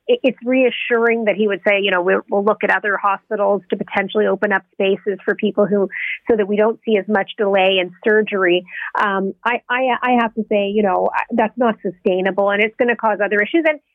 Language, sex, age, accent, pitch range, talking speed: English, female, 40-59, American, 205-245 Hz, 220 wpm